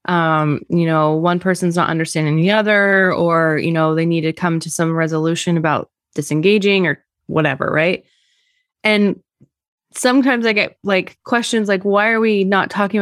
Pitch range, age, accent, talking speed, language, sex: 165-205 Hz, 20-39, American, 165 wpm, English, female